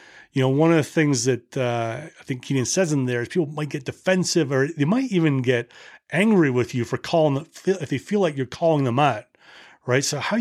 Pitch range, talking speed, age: 125-160 Hz, 230 wpm, 30-49